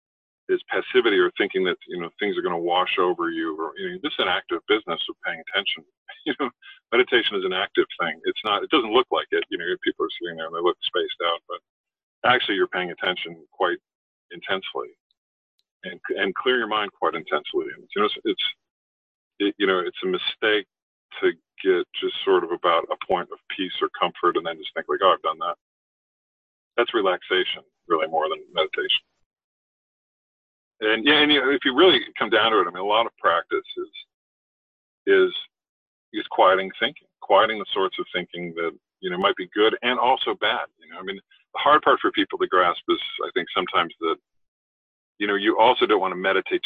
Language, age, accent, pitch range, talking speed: English, 40-59, American, 350-400 Hz, 210 wpm